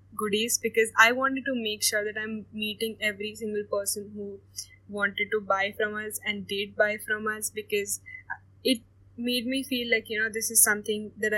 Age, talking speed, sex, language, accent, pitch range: 10-29, 190 wpm, female, English, Indian, 205-230 Hz